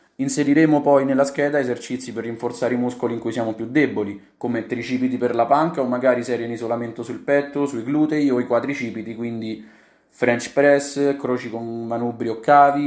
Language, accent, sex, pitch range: Italian, native, male, 115-140 Hz